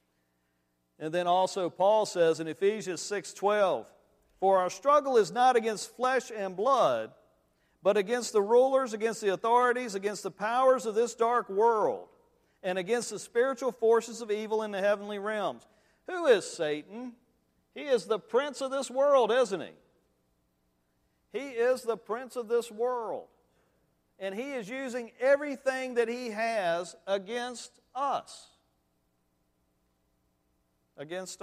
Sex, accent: male, American